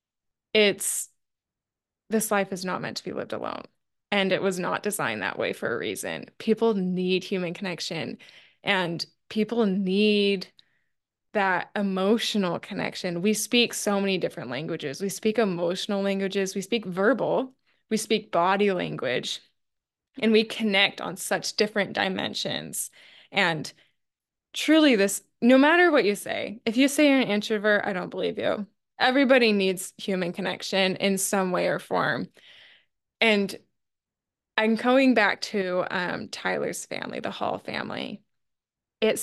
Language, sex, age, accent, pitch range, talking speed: English, female, 10-29, American, 185-220 Hz, 140 wpm